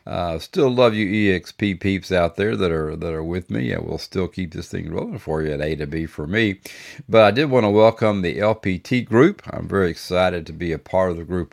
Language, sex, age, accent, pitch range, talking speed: English, male, 50-69, American, 75-100 Hz, 250 wpm